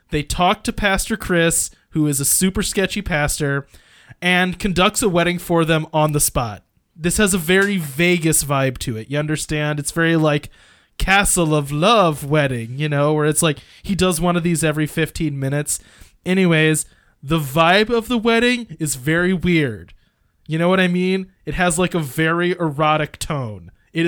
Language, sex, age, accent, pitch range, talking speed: English, male, 20-39, American, 140-175 Hz, 180 wpm